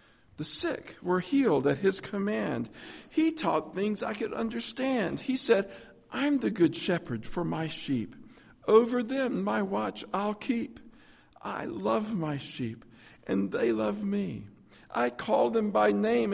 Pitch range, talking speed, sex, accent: 105-165 Hz, 150 wpm, male, American